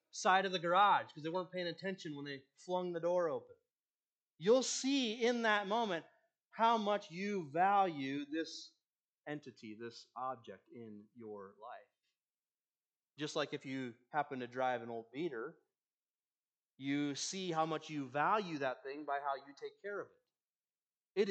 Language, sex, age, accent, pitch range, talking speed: English, male, 30-49, American, 135-210 Hz, 160 wpm